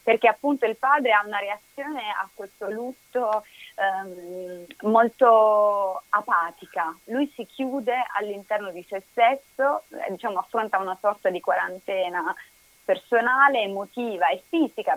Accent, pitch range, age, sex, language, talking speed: native, 185-230 Hz, 30-49, female, Italian, 125 wpm